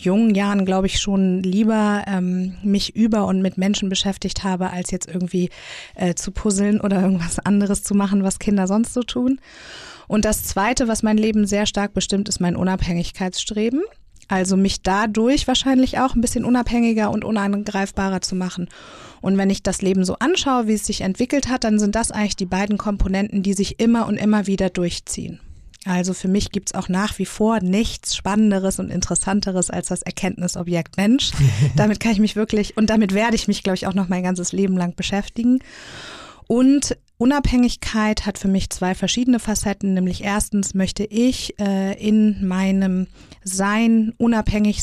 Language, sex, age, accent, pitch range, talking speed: German, female, 30-49, German, 185-215 Hz, 180 wpm